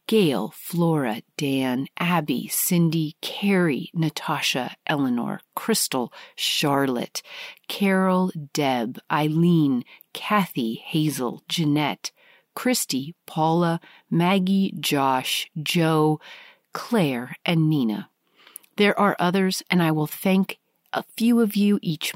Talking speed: 95 wpm